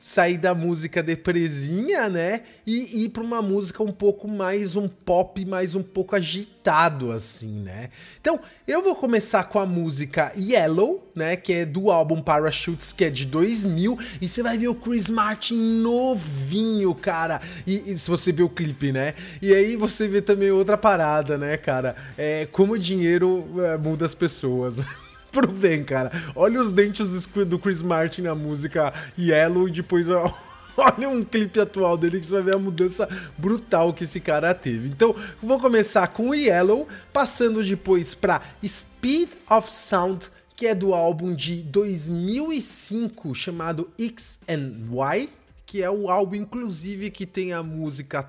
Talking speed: 165 wpm